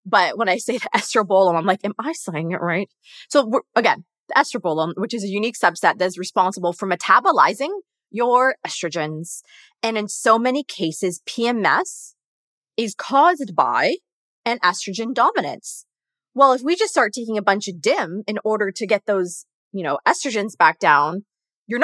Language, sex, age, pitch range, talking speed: English, female, 20-39, 185-250 Hz, 175 wpm